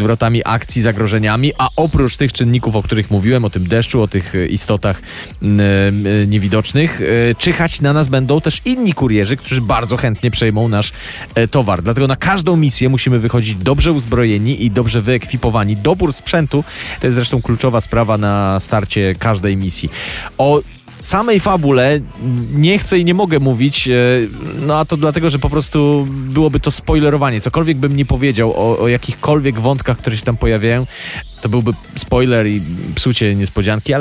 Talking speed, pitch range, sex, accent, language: 155 wpm, 110-140 Hz, male, native, Polish